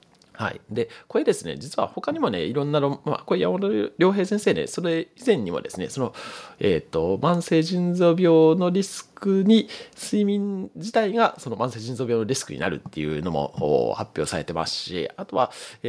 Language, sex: Japanese, male